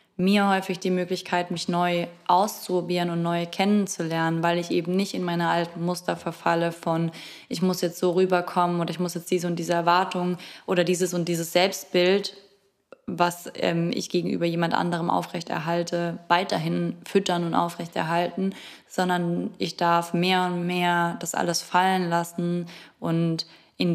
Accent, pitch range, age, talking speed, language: German, 165-180 Hz, 20-39, 155 wpm, German